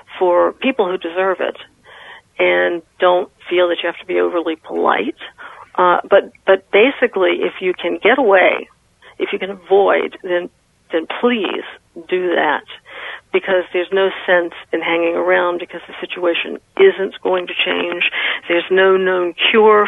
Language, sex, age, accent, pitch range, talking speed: English, female, 50-69, American, 170-230 Hz, 155 wpm